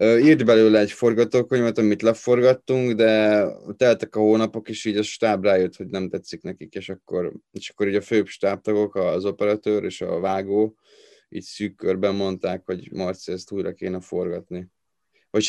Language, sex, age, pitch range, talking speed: Hungarian, male, 20-39, 95-105 Hz, 165 wpm